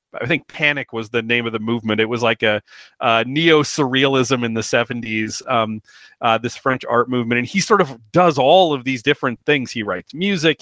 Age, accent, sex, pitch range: 30-49, American, male, 120-155 Hz